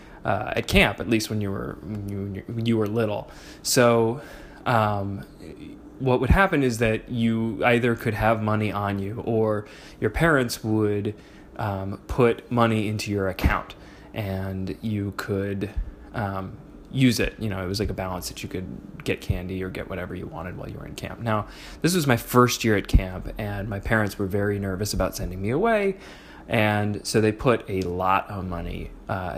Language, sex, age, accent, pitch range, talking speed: English, male, 20-39, American, 95-115 Hz, 190 wpm